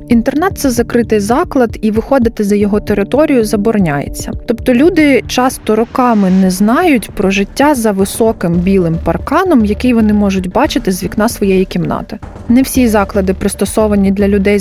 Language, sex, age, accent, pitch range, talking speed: Ukrainian, female, 20-39, native, 200-250 Hz, 150 wpm